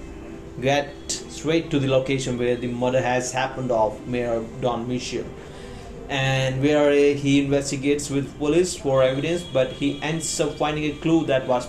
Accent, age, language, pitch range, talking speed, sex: native, 30-49, Hindi, 130-160 Hz, 160 wpm, male